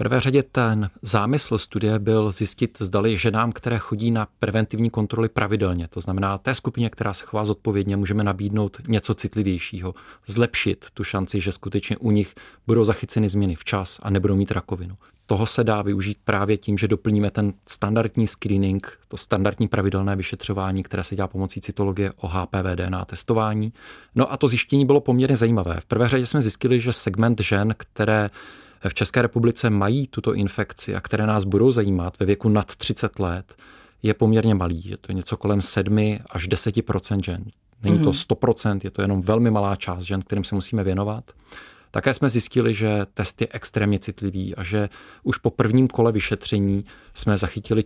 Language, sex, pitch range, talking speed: Czech, male, 100-110 Hz, 175 wpm